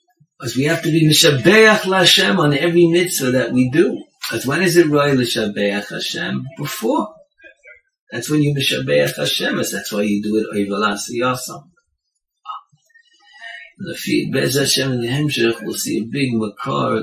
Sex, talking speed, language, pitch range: male, 135 wpm, English, 105-170 Hz